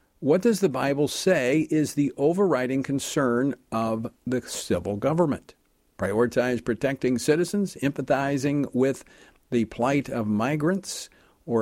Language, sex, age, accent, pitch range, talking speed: English, male, 50-69, American, 110-140 Hz, 120 wpm